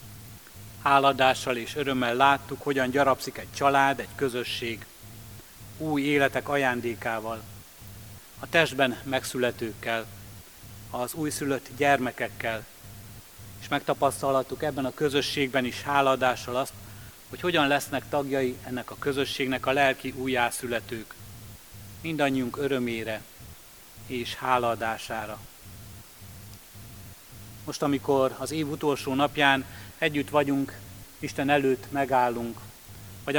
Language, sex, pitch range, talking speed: Hungarian, male, 110-140 Hz, 95 wpm